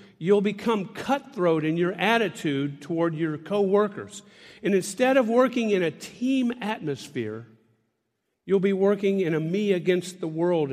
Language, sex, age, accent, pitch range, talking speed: English, male, 50-69, American, 145-200 Hz, 130 wpm